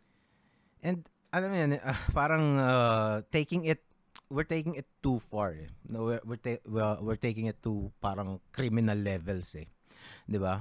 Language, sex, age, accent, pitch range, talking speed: English, male, 30-49, Filipino, 95-140 Hz, 155 wpm